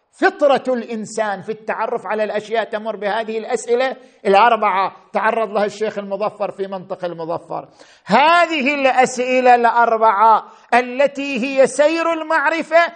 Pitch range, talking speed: 185-260 Hz, 110 wpm